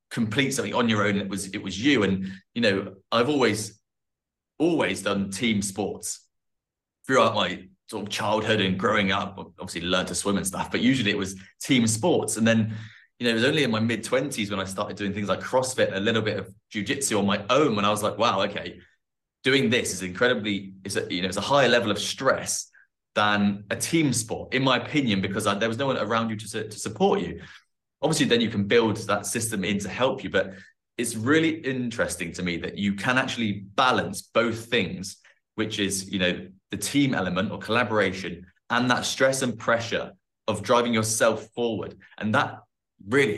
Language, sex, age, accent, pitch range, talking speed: English, male, 30-49, British, 100-115 Hz, 205 wpm